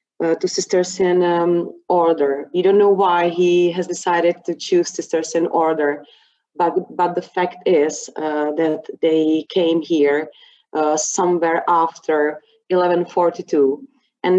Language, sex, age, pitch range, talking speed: English, female, 30-49, 165-195 Hz, 140 wpm